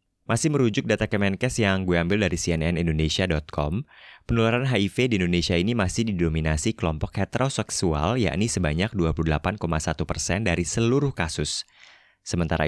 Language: Indonesian